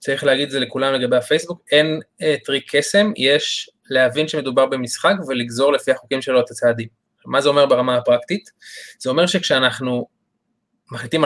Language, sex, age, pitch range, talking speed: Hebrew, male, 20-39, 130-170 Hz, 160 wpm